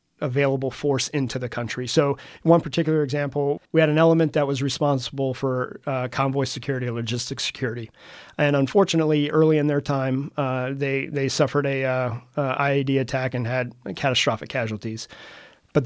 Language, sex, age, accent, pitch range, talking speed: English, male, 40-59, American, 130-150 Hz, 165 wpm